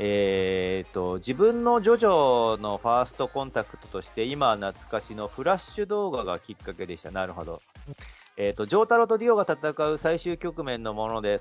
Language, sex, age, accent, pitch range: Japanese, male, 40-59, native, 100-155 Hz